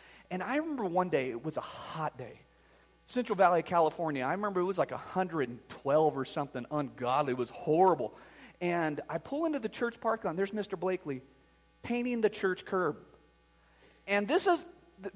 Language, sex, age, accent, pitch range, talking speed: English, male, 40-59, American, 155-225 Hz, 175 wpm